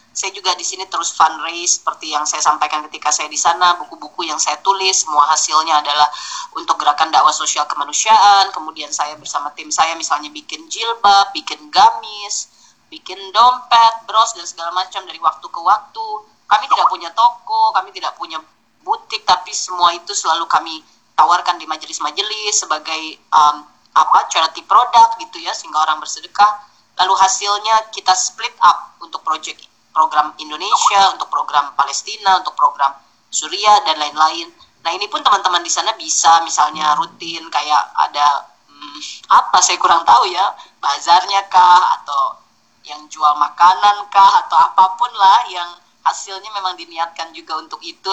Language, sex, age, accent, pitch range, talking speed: Indonesian, female, 20-39, native, 155-200 Hz, 155 wpm